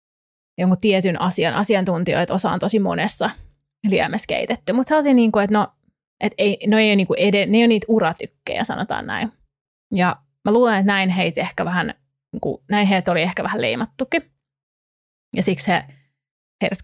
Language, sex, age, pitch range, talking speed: Finnish, female, 20-39, 180-220 Hz, 120 wpm